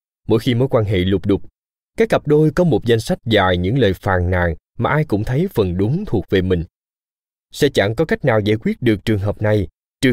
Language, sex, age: Vietnamese, male, 20-39